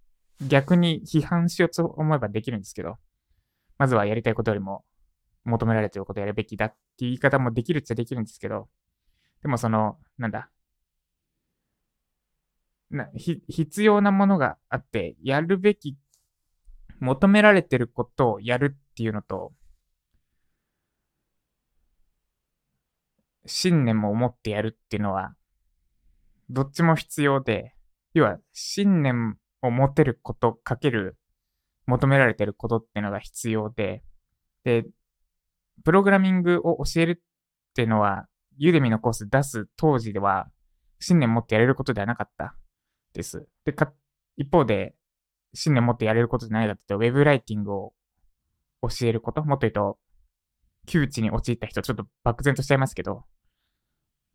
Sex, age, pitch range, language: male, 20-39, 100-140 Hz, Japanese